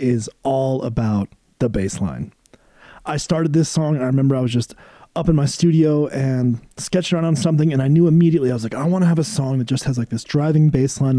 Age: 30-49